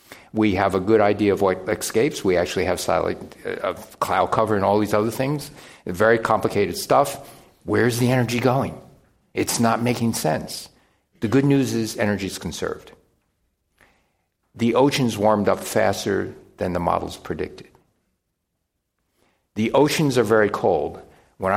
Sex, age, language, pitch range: male, 50-69, English, 100-120 Hz